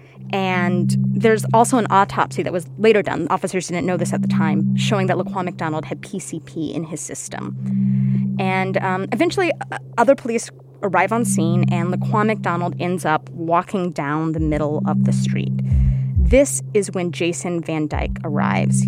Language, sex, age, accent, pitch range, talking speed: English, female, 20-39, American, 130-205 Hz, 170 wpm